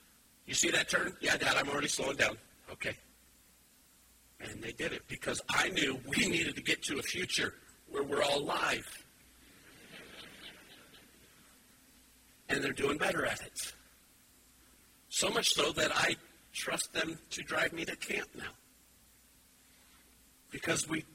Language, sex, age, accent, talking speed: English, male, 50-69, American, 140 wpm